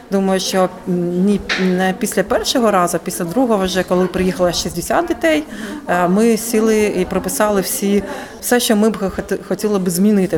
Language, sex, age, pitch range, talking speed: Ukrainian, female, 30-49, 190-235 Hz, 150 wpm